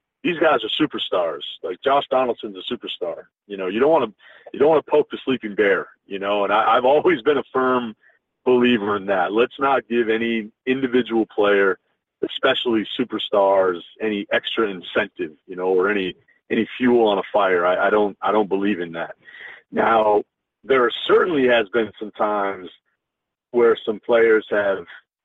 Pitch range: 95-120 Hz